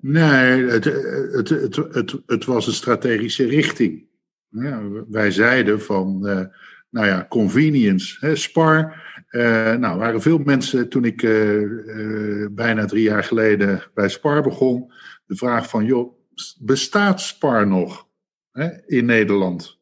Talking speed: 145 wpm